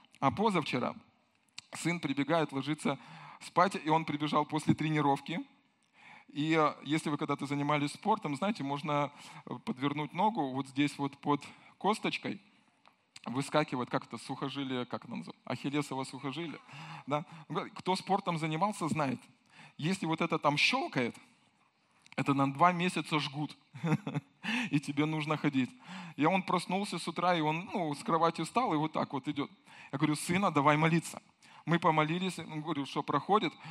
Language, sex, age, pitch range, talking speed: Russian, male, 20-39, 150-195 Hz, 140 wpm